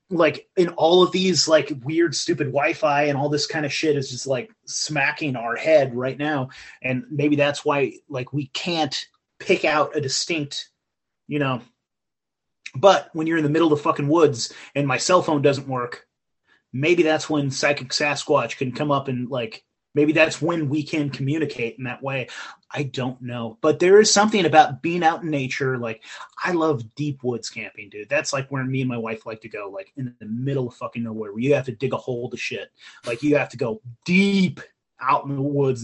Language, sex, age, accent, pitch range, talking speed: English, male, 30-49, American, 130-160 Hz, 210 wpm